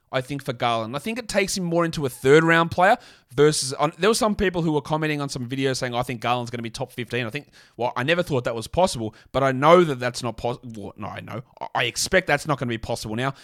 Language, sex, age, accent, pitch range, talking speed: English, male, 30-49, Australian, 130-170 Hz, 275 wpm